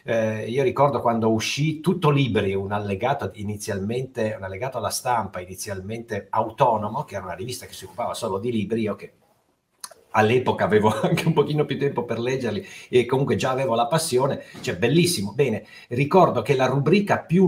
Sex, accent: male, native